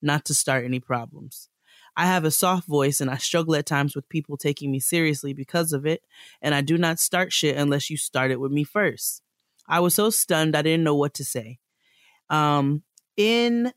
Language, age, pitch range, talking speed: English, 20-39, 135-165 Hz, 210 wpm